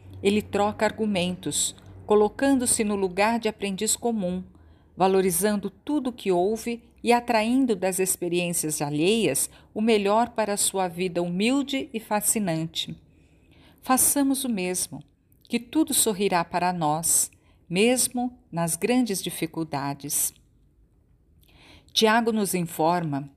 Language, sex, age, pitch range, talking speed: Portuguese, female, 50-69, 160-225 Hz, 110 wpm